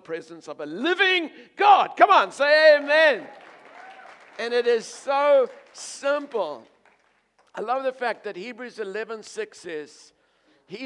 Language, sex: English, male